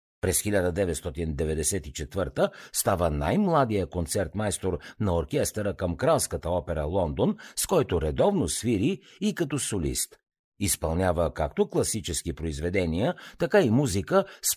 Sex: male